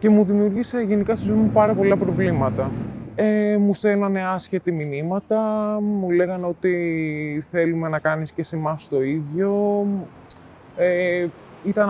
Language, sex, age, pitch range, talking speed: Greek, male, 20-39, 165-205 Hz, 130 wpm